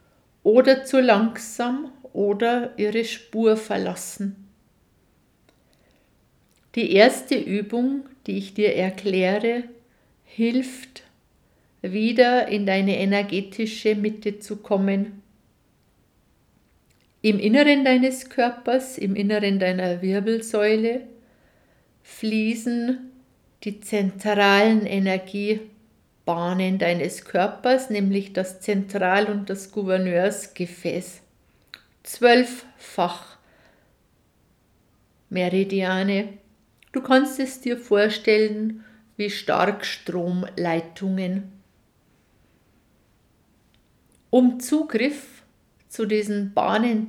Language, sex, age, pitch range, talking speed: German, female, 60-79, 195-240 Hz, 75 wpm